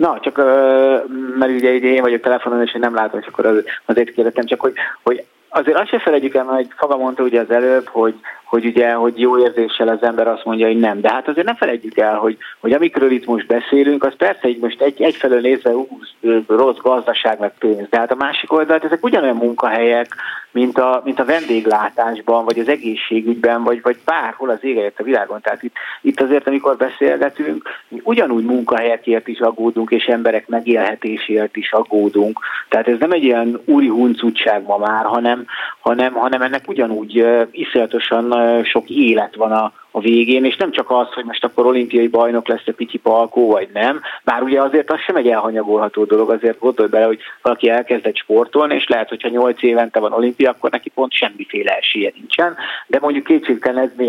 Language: Hungarian